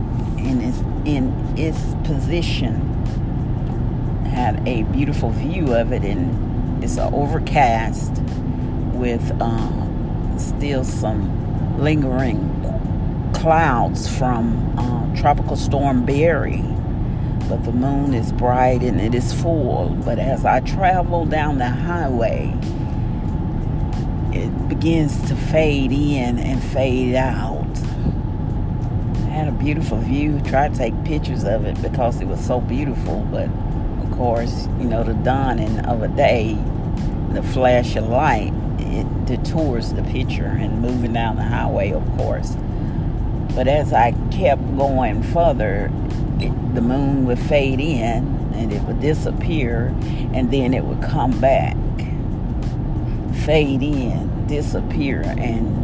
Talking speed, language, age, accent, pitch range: 120 wpm, English, 40-59, American, 115-135 Hz